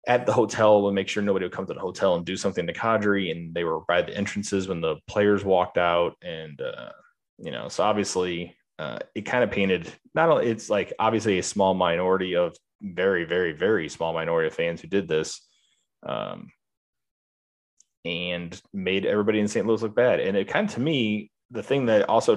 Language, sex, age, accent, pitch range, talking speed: English, male, 30-49, American, 85-110 Hz, 205 wpm